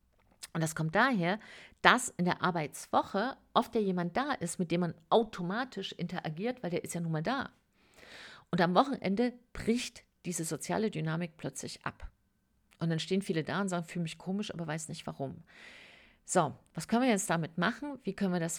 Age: 50-69